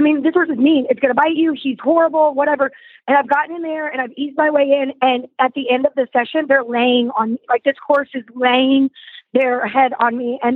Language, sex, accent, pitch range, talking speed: English, female, American, 255-295 Hz, 255 wpm